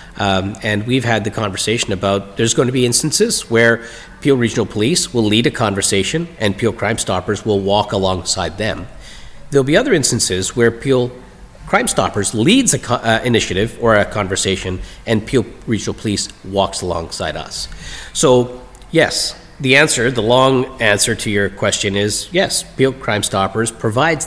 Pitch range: 105-135 Hz